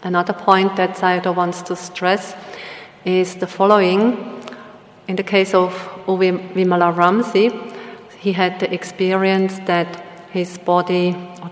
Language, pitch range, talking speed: English, 175-190 Hz, 125 wpm